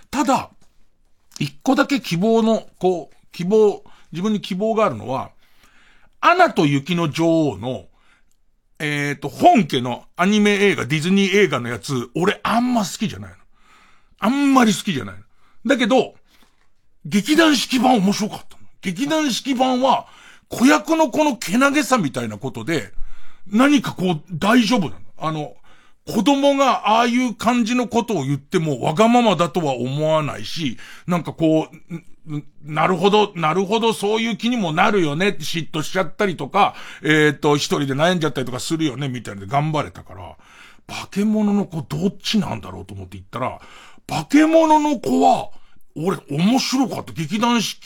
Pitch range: 150-235 Hz